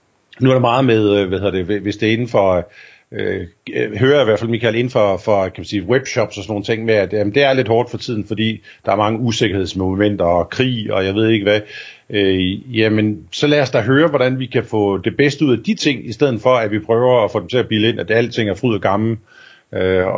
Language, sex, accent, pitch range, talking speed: Danish, male, native, 105-130 Hz, 270 wpm